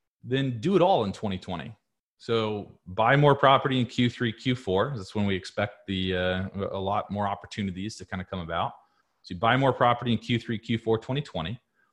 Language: English